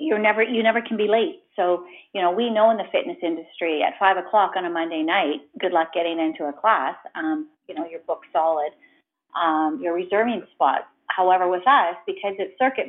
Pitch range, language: 175-230 Hz, English